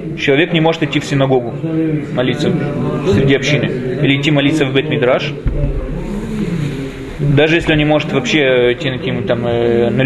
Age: 20-39